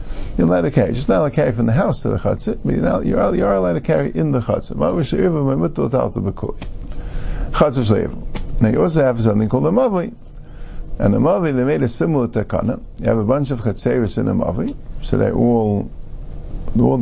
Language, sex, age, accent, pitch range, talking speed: English, male, 50-69, American, 110-170 Hz, 200 wpm